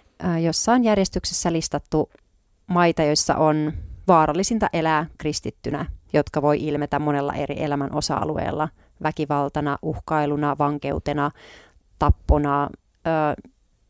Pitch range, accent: 145-175 Hz, native